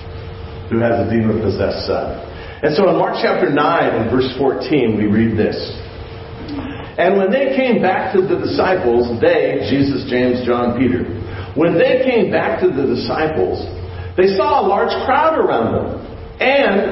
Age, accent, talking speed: 50-69, American, 160 wpm